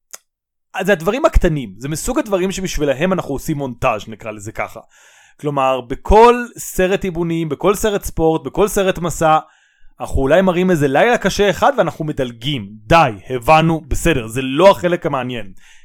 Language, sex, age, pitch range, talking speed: Hebrew, male, 20-39, 135-190 Hz, 150 wpm